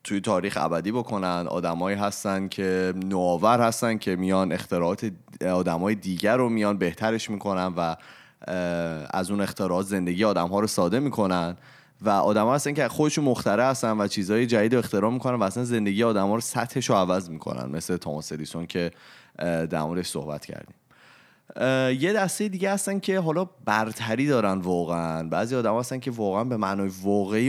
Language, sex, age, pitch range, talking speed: Persian, male, 30-49, 90-115 Hz, 155 wpm